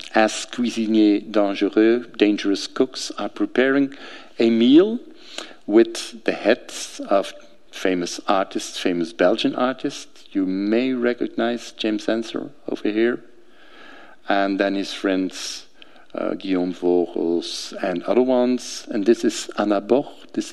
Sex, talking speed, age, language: male, 120 wpm, 50-69, English